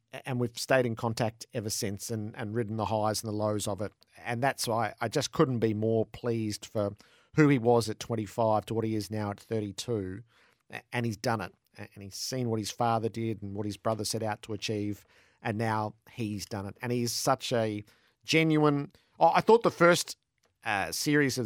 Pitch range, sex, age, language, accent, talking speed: 105-120 Hz, male, 50-69, English, Australian, 215 wpm